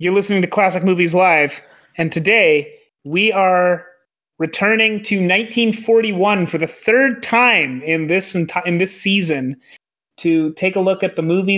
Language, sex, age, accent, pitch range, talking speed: English, male, 30-49, American, 155-190 Hz, 155 wpm